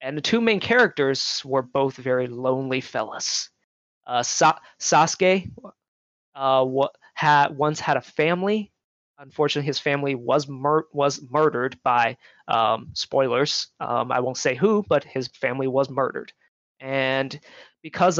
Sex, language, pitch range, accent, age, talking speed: male, English, 135-165 Hz, American, 20-39, 140 wpm